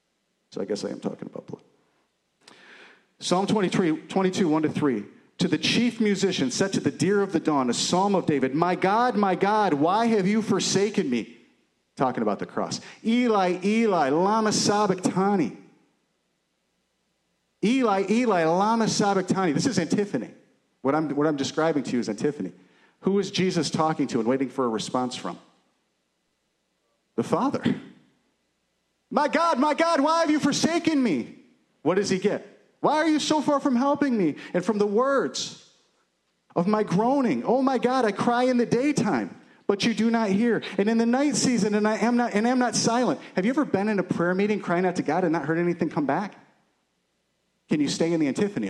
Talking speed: 190 wpm